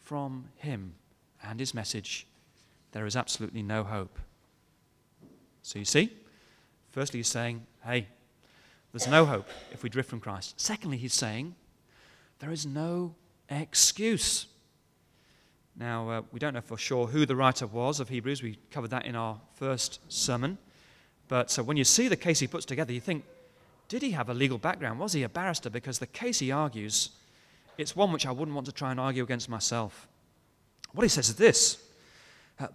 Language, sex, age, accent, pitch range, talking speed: English, male, 30-49, British, 120-155 Hz, 180 wpm